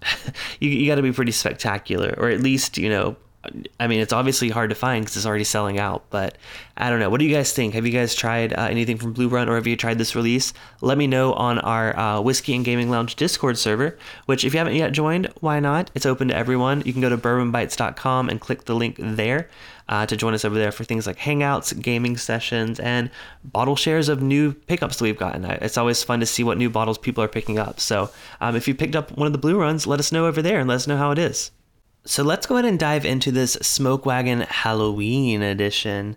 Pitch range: 110-140 Hz